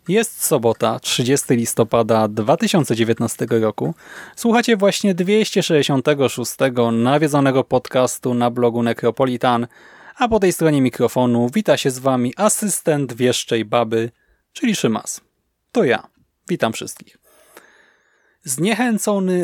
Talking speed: 100 wpm